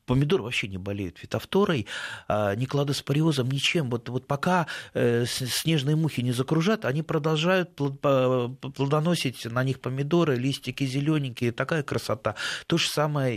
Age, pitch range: 30-49, 105-140 Hz